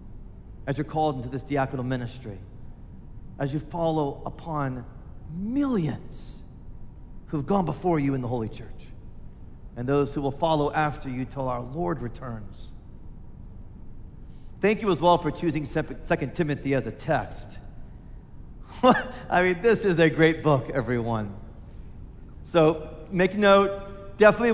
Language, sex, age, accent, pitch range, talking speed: English, male, 40-59, American, 130-205 Hz, 130 wpm